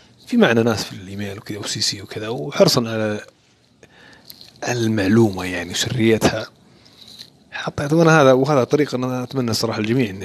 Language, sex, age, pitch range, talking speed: Arabic, male, 30-49, 105-140 Hz, 140 wpm